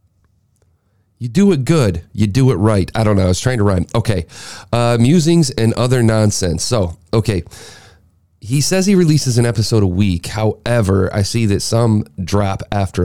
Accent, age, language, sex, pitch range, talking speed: American, 30-49, English, male, 95-115 Hz, 180 wpm